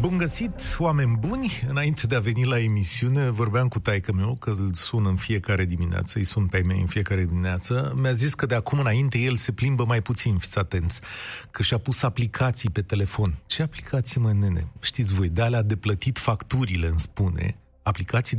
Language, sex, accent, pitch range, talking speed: Romanian, male, native, 100-130 Hz, 195 wpm